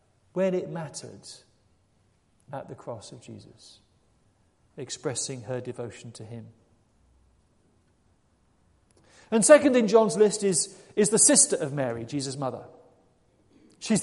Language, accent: English, British